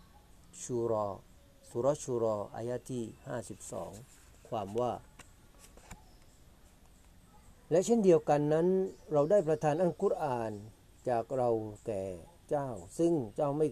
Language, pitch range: Thai, 110-150 Hz